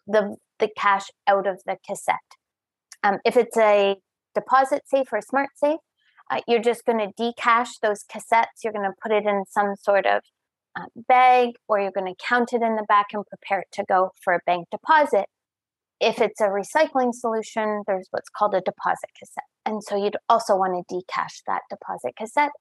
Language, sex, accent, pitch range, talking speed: English, female, American, 205-250 Hz, 200 wpm